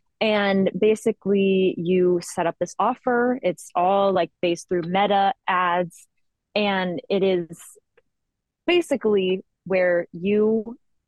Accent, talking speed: American, 110 wpm